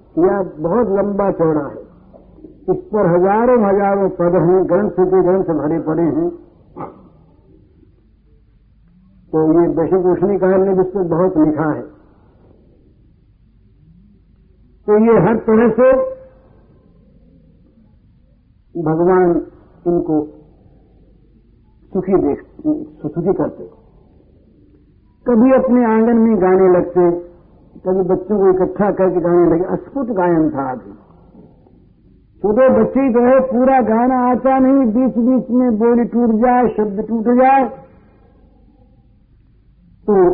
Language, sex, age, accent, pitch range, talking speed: Hindi, male, 60-79, native, 180-240 Hz, 110 wpm